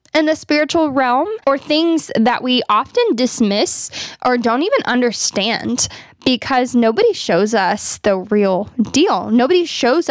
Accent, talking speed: American, 135 wpm